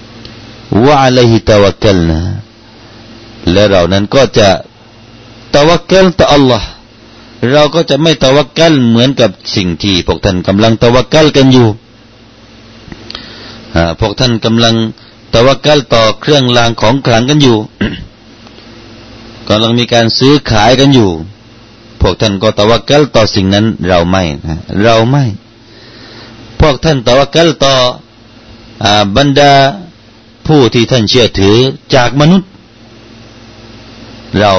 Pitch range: 100-125 Hz